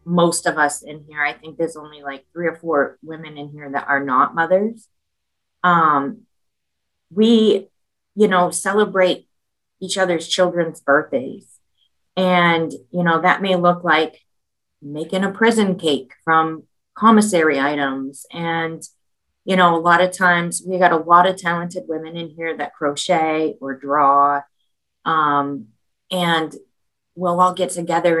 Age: 30-49